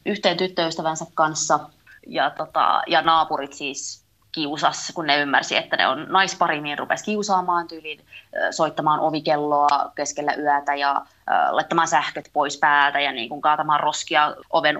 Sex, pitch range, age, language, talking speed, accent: female, 150-180 Hz, 20-39, Finnish, 140 wpm, native